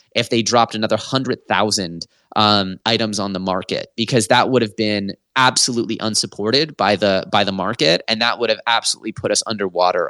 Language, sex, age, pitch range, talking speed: English, male, 20-39, 100-115 Hz, 180 wpm